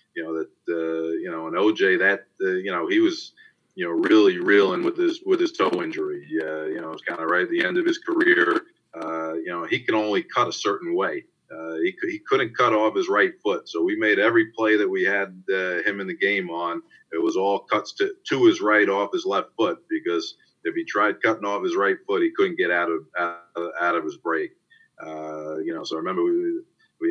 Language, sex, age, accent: English, male, 40-59, American